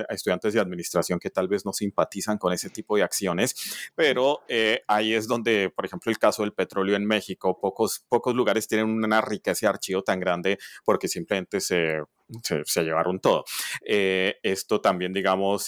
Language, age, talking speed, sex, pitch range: Spanish, 30-49, 185 wpm, male, 95-110 Hz